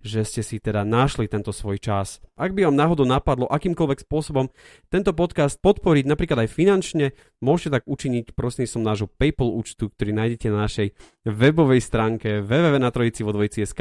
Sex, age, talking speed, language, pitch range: male, 30-49, 155 wpm, Slovak, 110-140 Hz